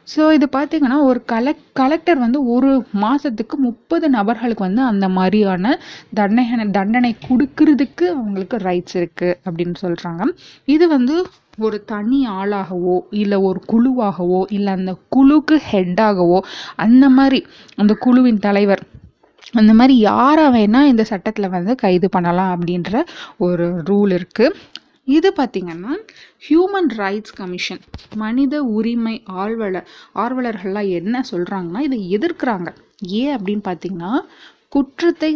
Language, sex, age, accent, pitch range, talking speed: Tamil, female, 20-39, native, 185-255 Hz, 115 wpm